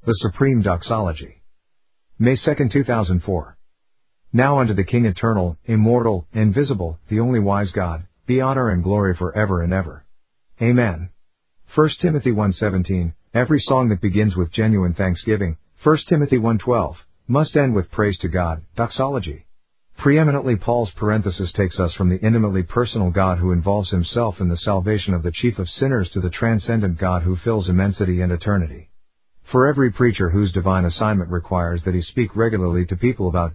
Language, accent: English, American